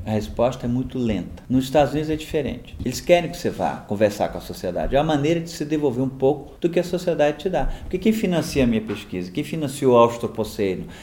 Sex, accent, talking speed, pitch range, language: male, Brazilian, 235 wpm, 115-155 Hz, Portuguese